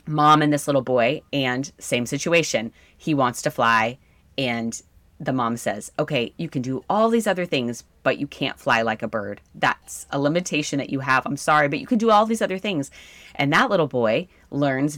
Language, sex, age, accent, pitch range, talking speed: English, female, 30-49, American, 130-190 Hz, 210 wpm